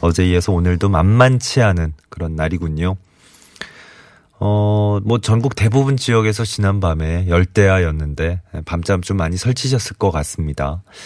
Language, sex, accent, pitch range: Korean, male, native, 85-110 Hz